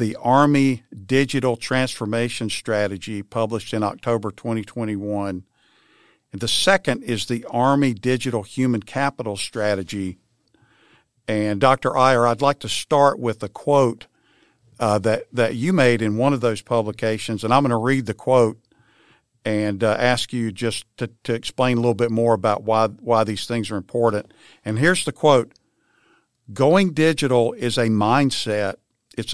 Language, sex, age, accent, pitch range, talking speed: English, male, 50-69, American, 110-130 Hz, 155 wpm